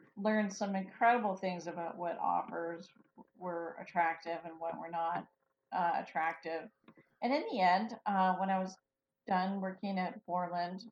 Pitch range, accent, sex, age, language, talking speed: 165-185 Hz, American, female, 40-59, English, 150 wpm